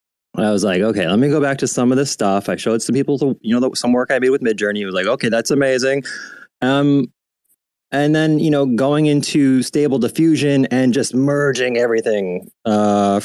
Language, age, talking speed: English, 20-39, 215 wpm